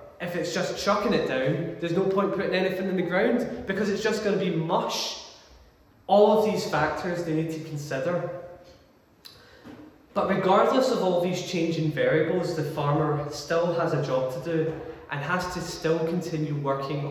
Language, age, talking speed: English, 10-29, 170 wpm